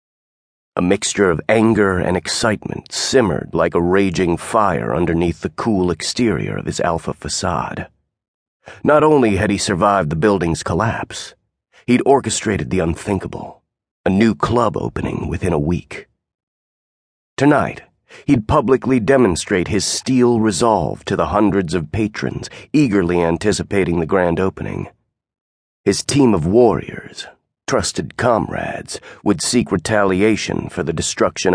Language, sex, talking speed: English, male, 125 wpm